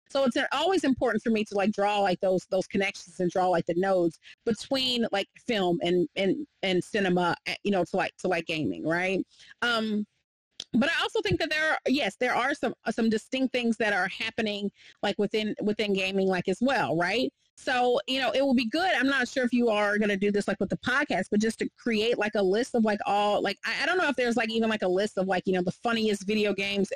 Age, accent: 30-49, American